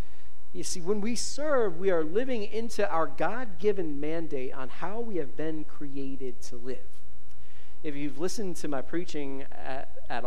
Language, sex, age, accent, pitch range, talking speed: English, male, 40-59, American, 105-150 Hz, 165 wpm